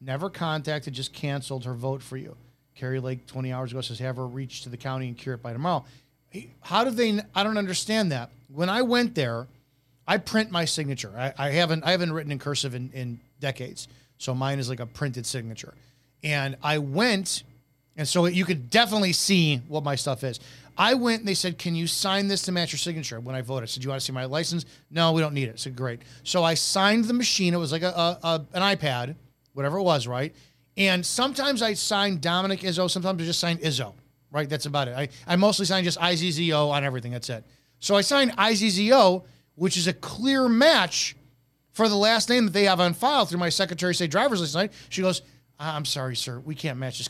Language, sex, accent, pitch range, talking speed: English, male, American, 130-195 Hz, 230 wpm